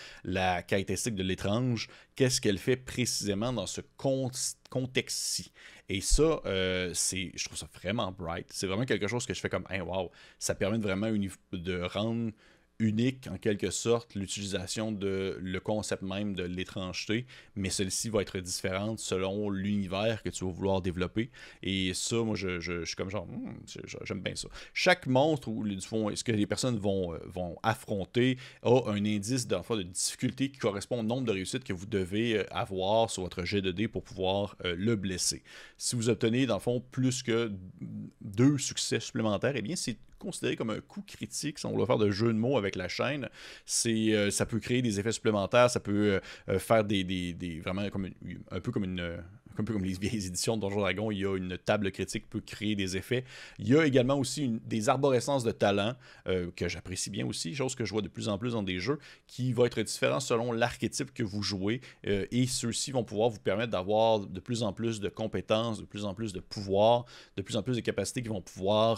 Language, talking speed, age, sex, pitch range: French, 210 wpm, 30-49, male, 95-115 Hz